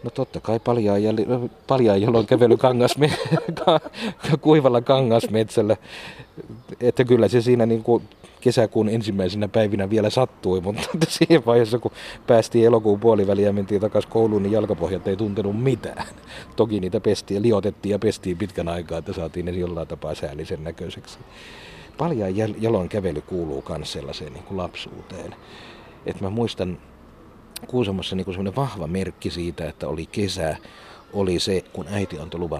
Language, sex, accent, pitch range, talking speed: Finnish, male, native, 85-115 Hz, 135 wpm